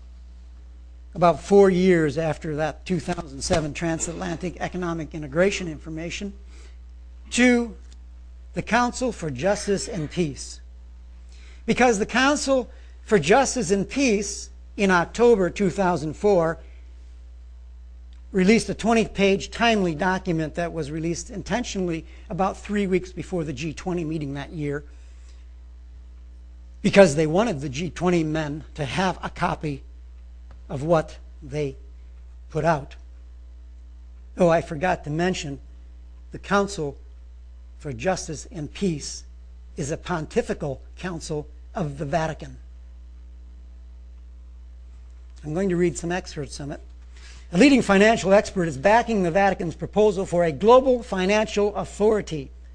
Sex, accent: male, American